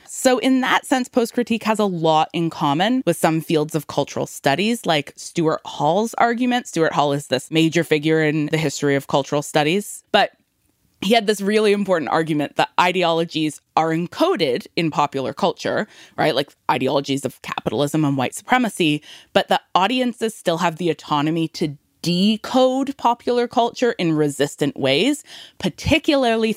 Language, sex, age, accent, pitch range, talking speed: English, female, 20-39, American, 150-205 Hz, 155 wpm